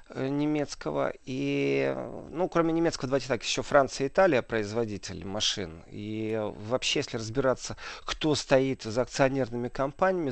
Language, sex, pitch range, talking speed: Russian, male, 115-140 Hz, 130 wpm